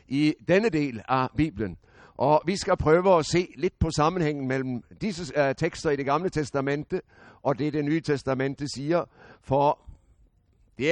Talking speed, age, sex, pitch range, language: 160 wpm, 60-79, male, 125-155 Hz, Danish